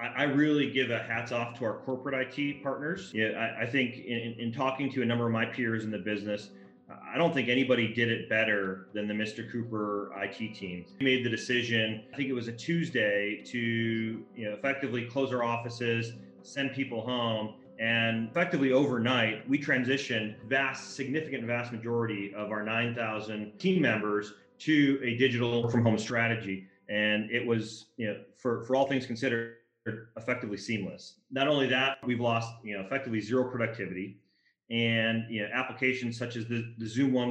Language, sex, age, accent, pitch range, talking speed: English, male, 30-49, American, 110-130 Hz, 180 wpm